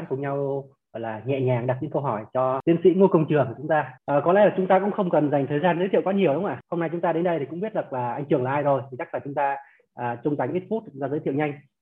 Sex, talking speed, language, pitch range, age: male, 355 wpm, Vietnamese, 130-170 Hz, 20-39